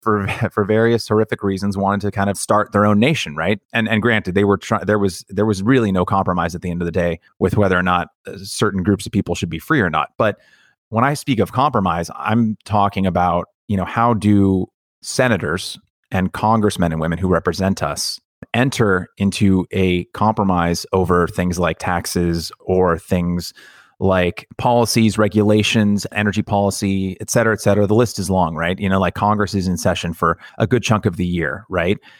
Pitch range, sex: 90-110 Hz, male